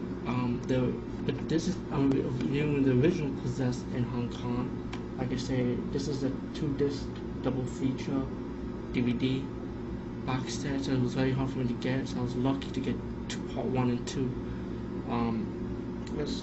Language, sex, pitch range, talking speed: English, male, 90-130 Hz, 165 wpm